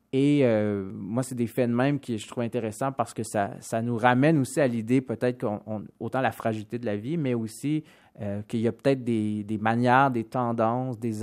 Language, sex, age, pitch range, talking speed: French, male, 30-49, 110-125 Hz, 230 wpm